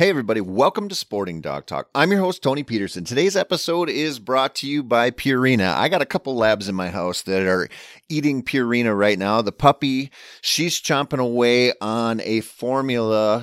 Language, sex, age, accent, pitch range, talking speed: English, male, 30-49, American, 95-130 Hz, 190 wpm